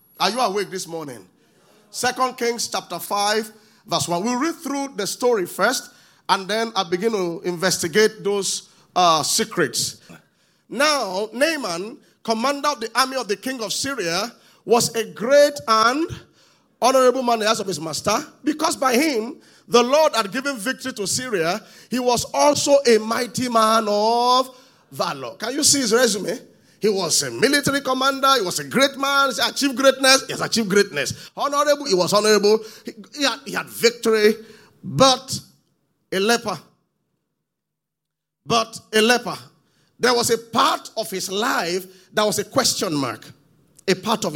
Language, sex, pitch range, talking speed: English, male, 200-260 Hz, 160 wpm